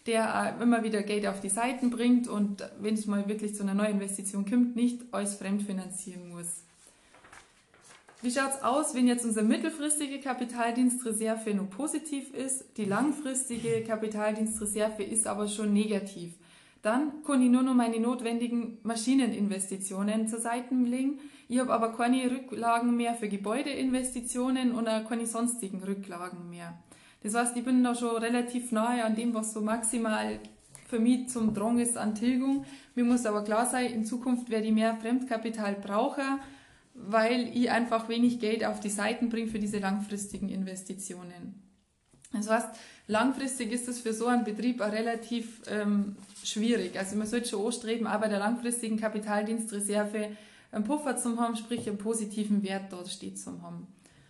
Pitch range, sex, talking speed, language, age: 205-245 Hz, female, 160 wpm, German, 20-39